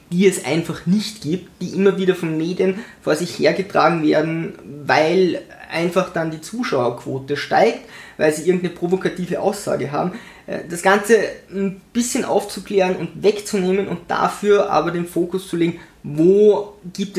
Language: German